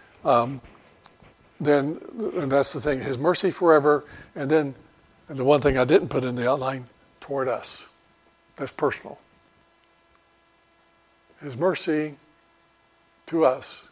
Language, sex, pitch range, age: English, male, 130-160 Hz, 60-79